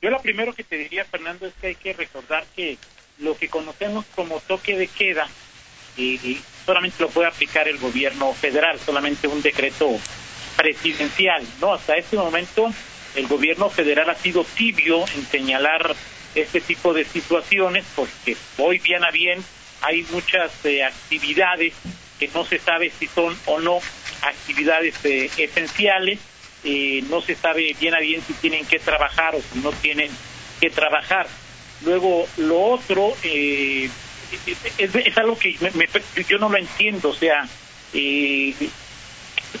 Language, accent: Spanish, Mexican